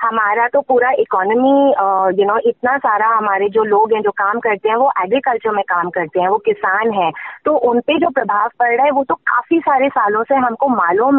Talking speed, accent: 220 wpm, native